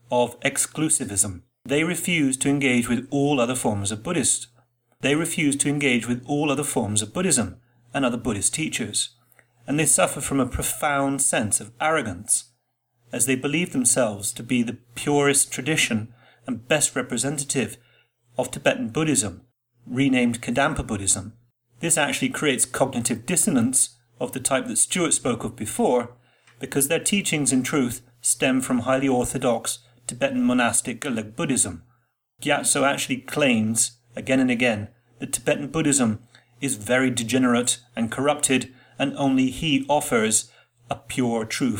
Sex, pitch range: male, 120-140 Hz